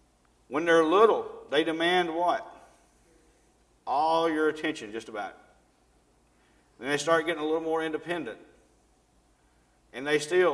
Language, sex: English, male